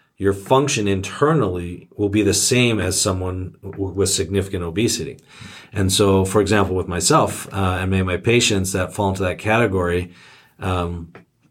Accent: American